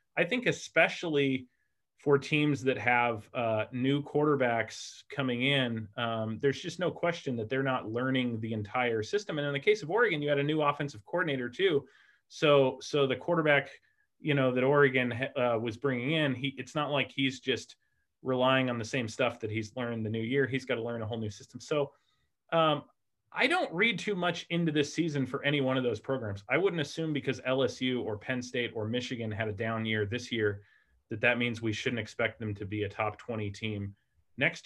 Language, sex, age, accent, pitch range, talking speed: English, male, 30-49, American, 115-145 Hz, 210 wpm